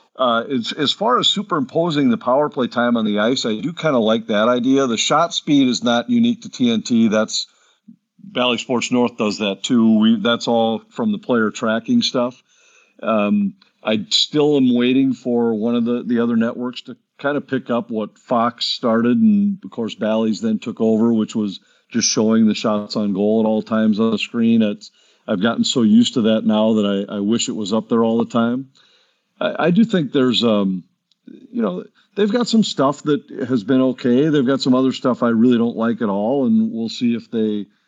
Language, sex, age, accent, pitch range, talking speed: English, male, 50-69, American, 110-185 Hz, 210 wpm